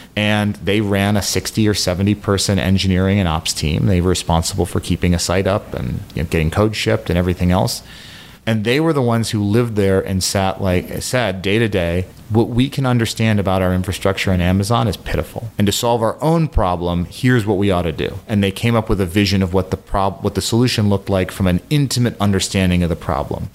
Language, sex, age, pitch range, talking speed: English, male, 30-49, 90-110 Hz, 230 wpm